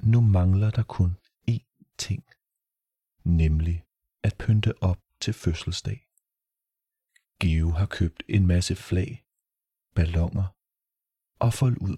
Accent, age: native, 30-49